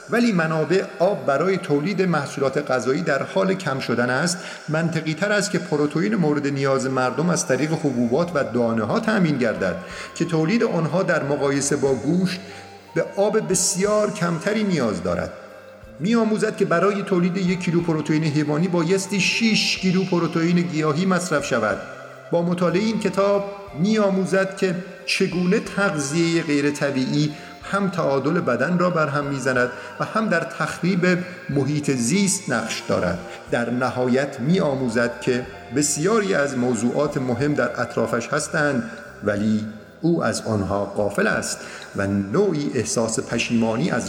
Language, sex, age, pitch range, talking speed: Persian, male, 50-69, 125-185 Hz, 145 wpm